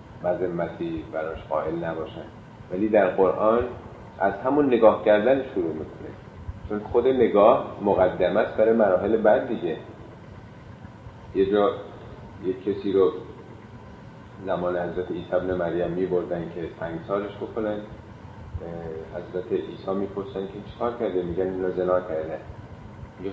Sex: male